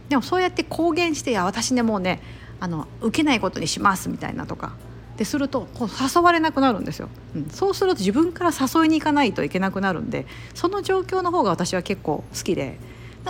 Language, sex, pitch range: Japanese, female, 170-265 Hz